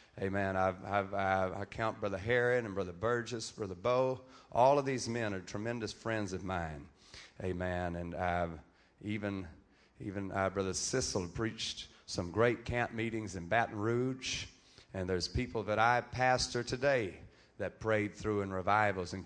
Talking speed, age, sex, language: 155 wpm, 40-59, male, English